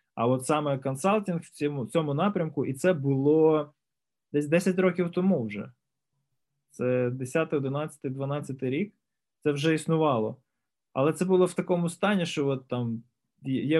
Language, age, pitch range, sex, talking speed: Ukrainian, 20-39, 125-160 Hz, male, 150 wpm